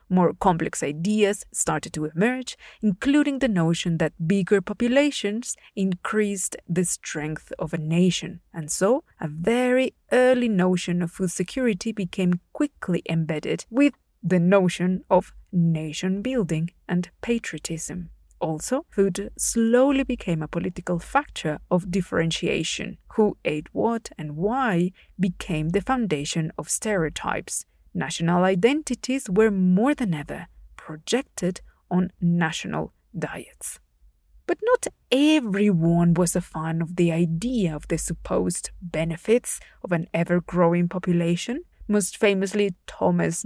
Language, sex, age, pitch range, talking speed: English, female, 30-49, 170-220 Hz, 120 wpm